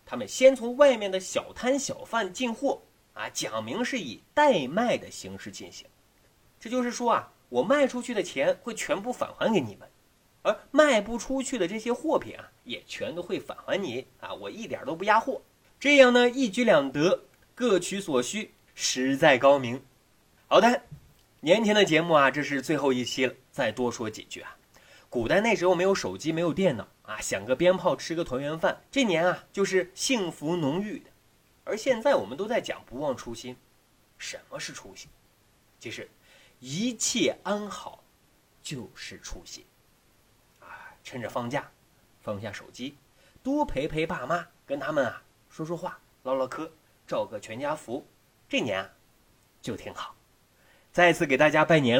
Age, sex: 30-49, male